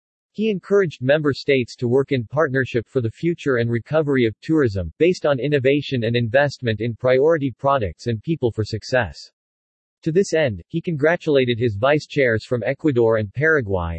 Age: 40-59